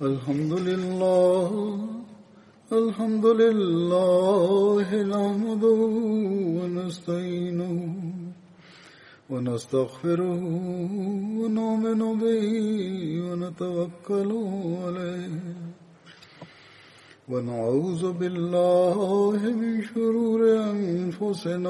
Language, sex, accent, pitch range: Malayalam, male, native, 175-205 Hz